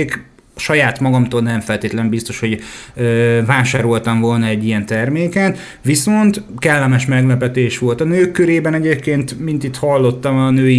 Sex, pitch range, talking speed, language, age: male, 120-140 Hz, 135 wpm, Hungarian, 30-49